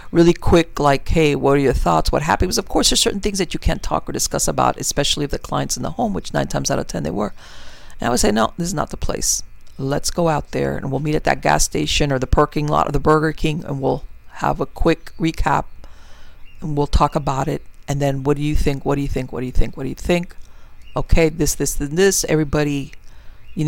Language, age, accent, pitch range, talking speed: English, 50-69, American, 145-185 Hz, 260 wpm